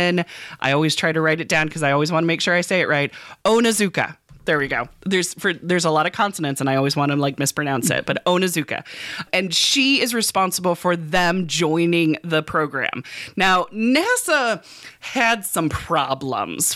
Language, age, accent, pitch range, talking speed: English, 20-39, American, 150-205 Hz, 190 wpm